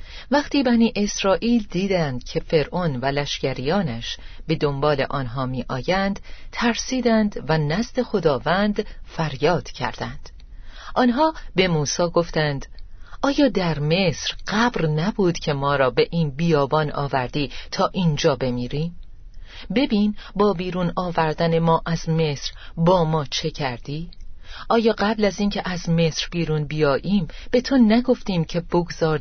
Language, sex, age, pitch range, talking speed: Persian, female, 40-59, 145-195 Hz, 125 wpm